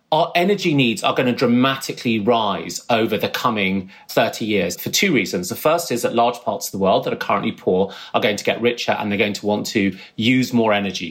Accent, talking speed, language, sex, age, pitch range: British, 230 wpm, English, male, 30-49, 115-145 Hz